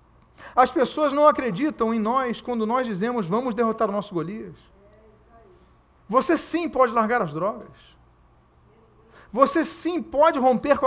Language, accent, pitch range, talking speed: Portuguese, Brazilian, 185-295 Hz, 140 wpm